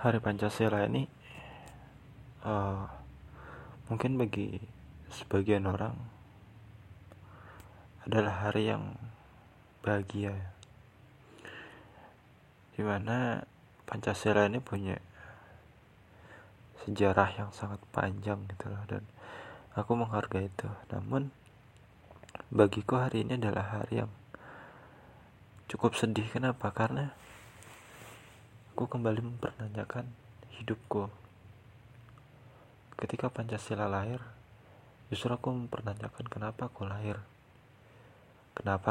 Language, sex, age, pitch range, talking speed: Indonesian, male, 20-39, 100-120 Hz, 75 wpm